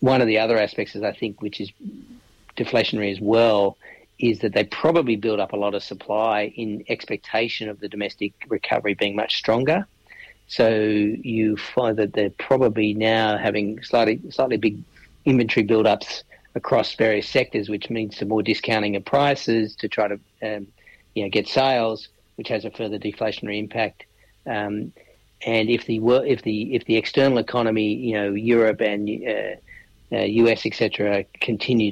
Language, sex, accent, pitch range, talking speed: English, male, Australian, 100-110 Hz, 165 wpm